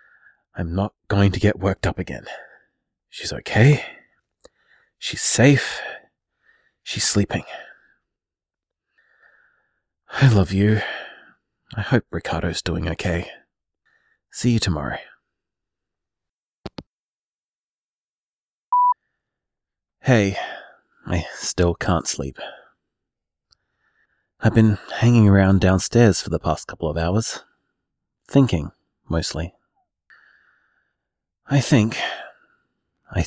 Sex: male